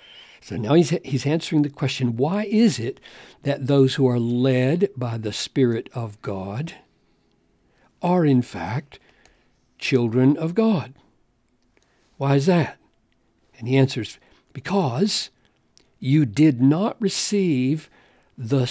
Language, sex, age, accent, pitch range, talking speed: English, male, 60-79, American, 130-175 Hz, 120 wpm